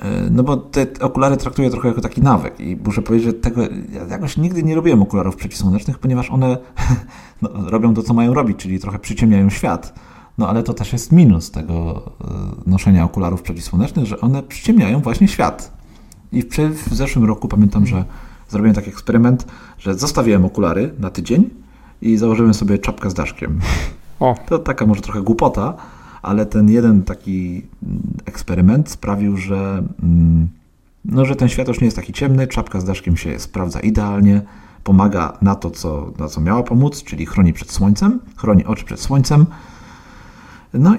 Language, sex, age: Polish, male, 40-59